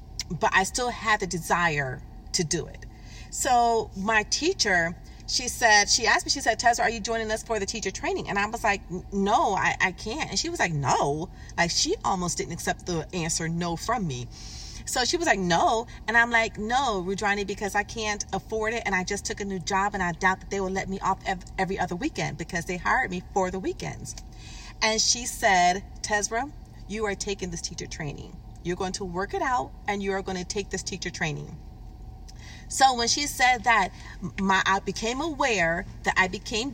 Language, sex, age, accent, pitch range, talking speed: English, female, 40-59, American, 175-220 Hz, 210 wpm